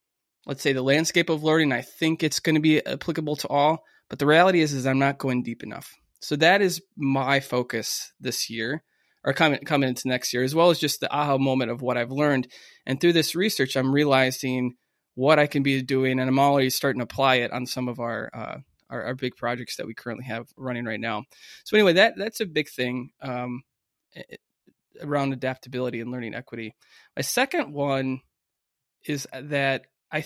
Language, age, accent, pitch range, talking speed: English, 20-39, American, 130-155 Hz, 205 wpm